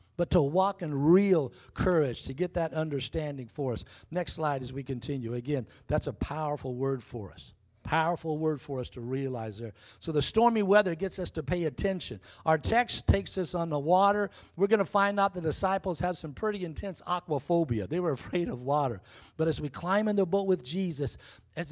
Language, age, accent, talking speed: English, 60-79, American, 205 wpm